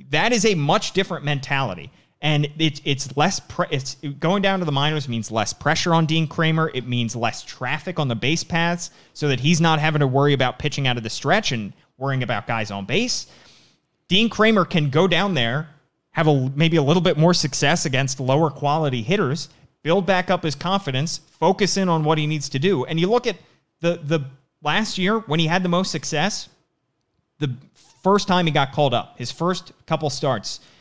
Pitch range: 135-175 Hz